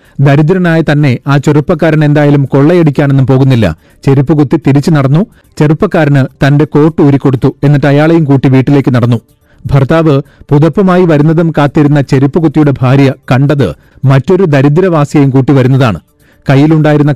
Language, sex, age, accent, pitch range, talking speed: Malayalam, male, 40-59, native, 135-155 Hz, 100 wpm